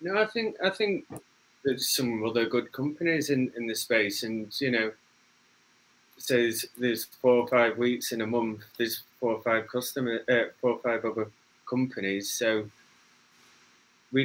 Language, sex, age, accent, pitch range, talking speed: English, male, 20-39, British, 105-125 Hz, 170 wpm